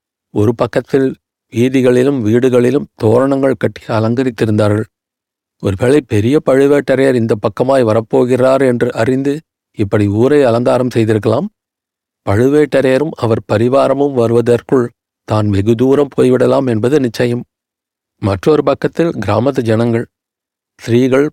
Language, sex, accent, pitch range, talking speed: Tamil, male, native, 115-135 Hz, 95 wpm